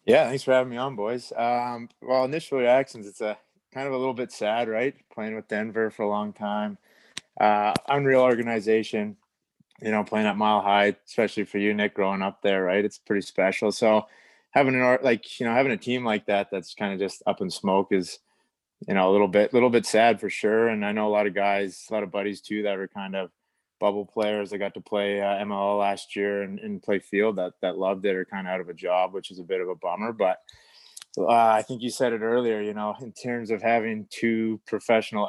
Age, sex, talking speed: 20-39, male, 240 wpm